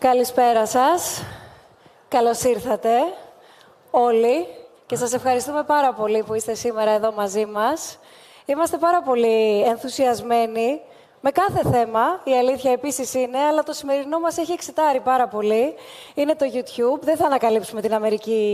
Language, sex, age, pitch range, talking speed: Greek, female, 20-39, 245-310 Hz, 140 wpm